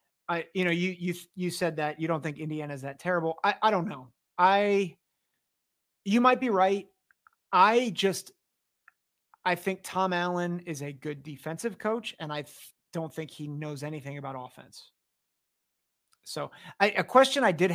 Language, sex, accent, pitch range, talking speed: English, male, American, 145-185 Hz, 170 wpm